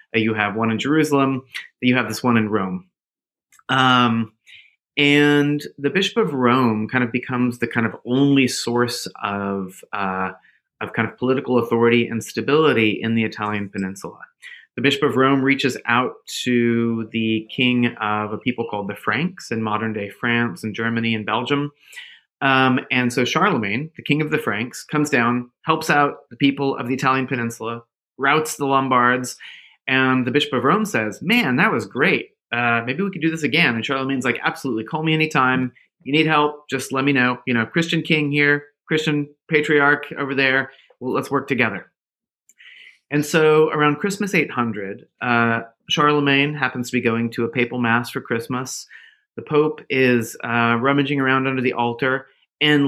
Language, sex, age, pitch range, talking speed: English, male, 30-49, 120-150 Hz, 175 wpm